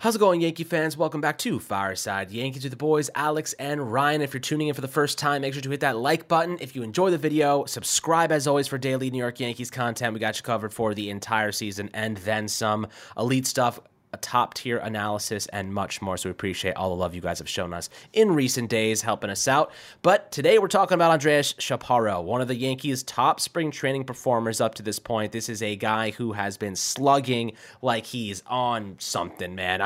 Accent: American